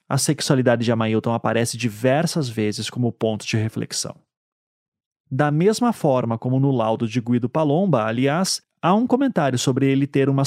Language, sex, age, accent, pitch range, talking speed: Portuguese, male, 30-49, Brazilian, 125-170 Hz, 160 wpm